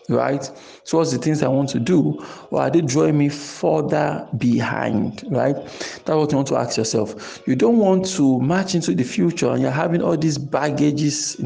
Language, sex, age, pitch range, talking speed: English, male, 50-69, 125-160 Hz, 205 wpm